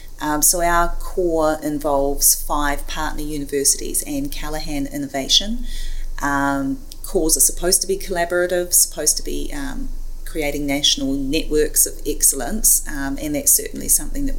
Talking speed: 140 wpm